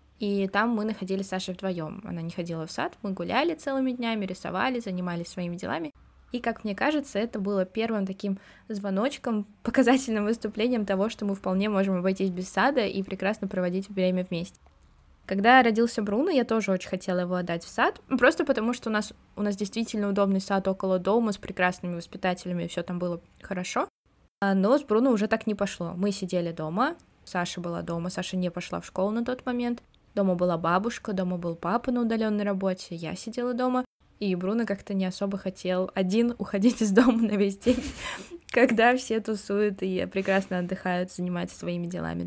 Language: Russian